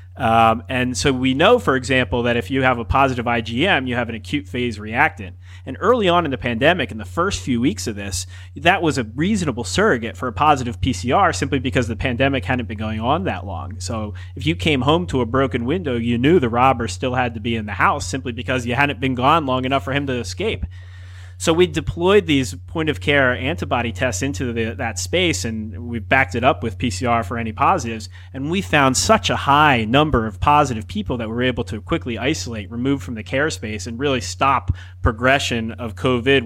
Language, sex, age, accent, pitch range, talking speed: English, male, 30-49, American, 105-135 Hz, 220 wpm